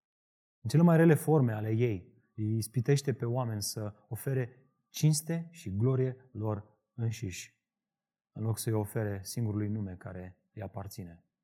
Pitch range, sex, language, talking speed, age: 110-170 Hz, male, Romanian, 145 wpm, 30-49